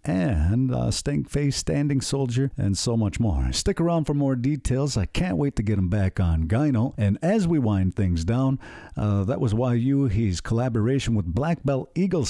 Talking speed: 195 wpm